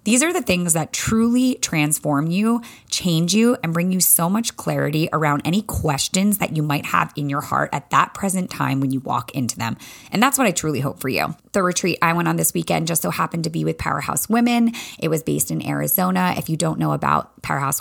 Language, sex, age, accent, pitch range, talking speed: English, female, 20-39, American, 150-210 Hz, 235 wpm